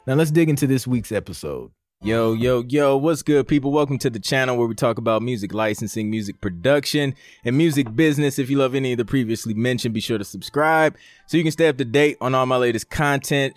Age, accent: 20-39, American